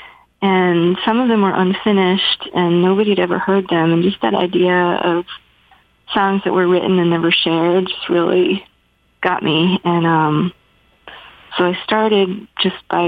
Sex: female